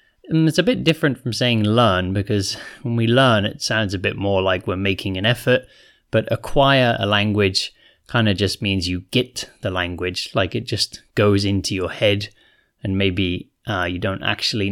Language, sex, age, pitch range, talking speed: English, male, 20-39, 95-115 Hz, 190 wpm